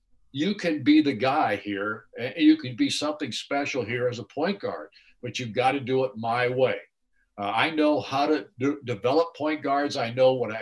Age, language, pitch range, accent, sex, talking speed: 60-79, English, 125-150 Hz, American, male, 215 wpm